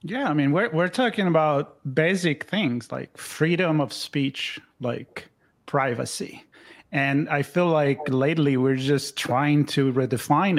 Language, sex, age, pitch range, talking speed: English, male, 30-49, 135-160 Hz, 140 wpm